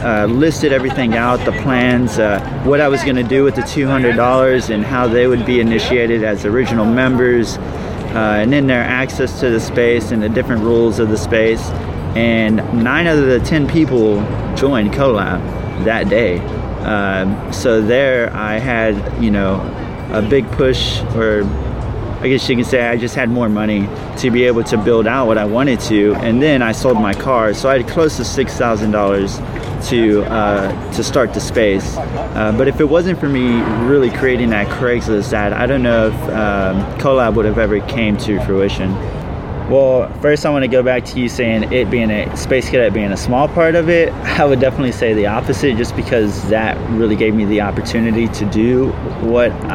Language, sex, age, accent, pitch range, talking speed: English, male, 30-49, American, 105-125 Hz, 200 wpm